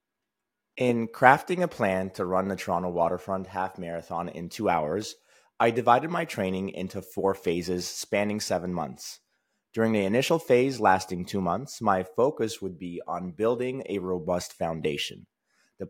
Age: 30-49